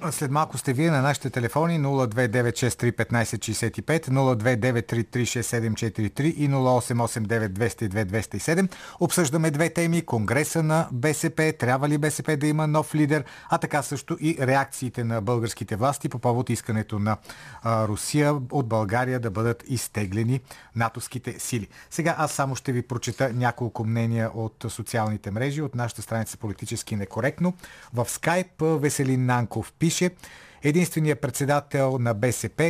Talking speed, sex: 130 wpm, male